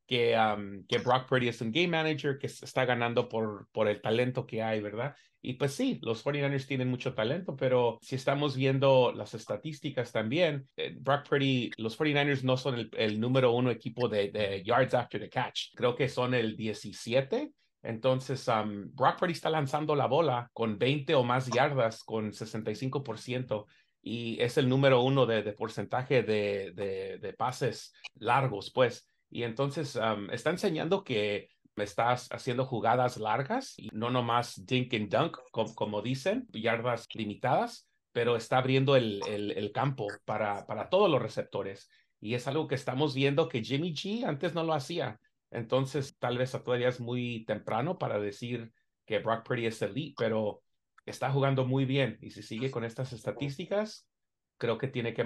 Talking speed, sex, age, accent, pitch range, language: 175 wpm, male, 30-49, Mexican, 110-140 Hz, Spanish